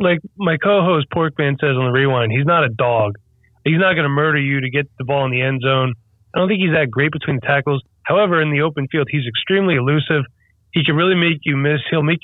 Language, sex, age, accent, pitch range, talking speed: English, male, 20-39, American, 125-165 Hz, 250 wpm